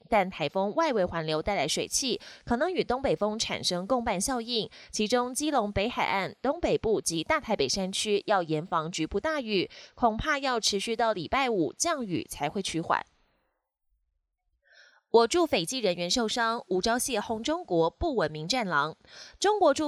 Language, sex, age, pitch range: Chinese, female, 20-39, 175-260 Hz